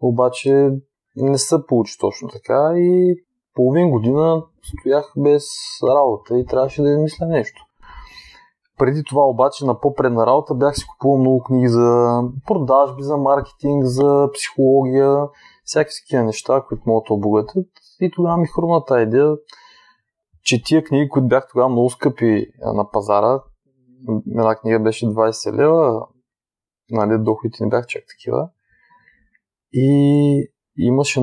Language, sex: Bulgarian, male